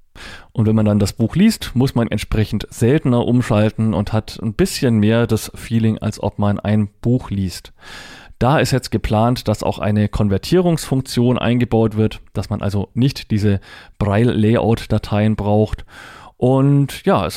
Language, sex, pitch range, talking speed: German, male, 105-120 Hz, 155 wpm